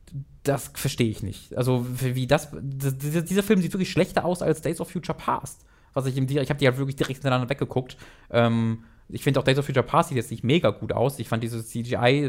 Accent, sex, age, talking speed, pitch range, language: German, male, 20-39, 230 wpm, 125-170 Hz, German